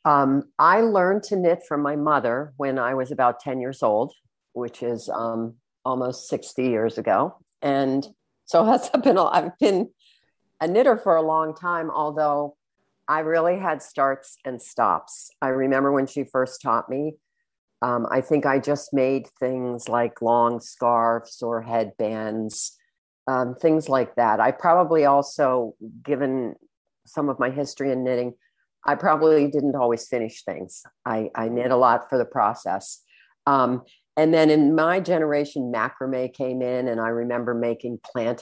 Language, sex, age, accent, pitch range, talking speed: English, female, 50-69, American, 120-150 Hz, 160 wpm